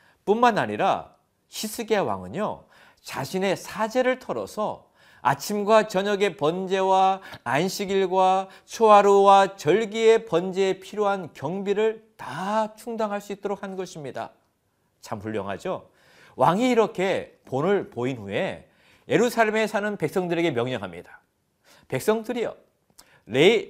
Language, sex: Korean, male